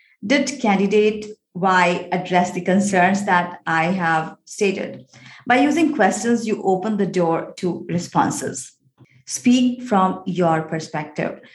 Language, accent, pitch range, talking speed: English, Indian, 170-225 Hz, 120 wpm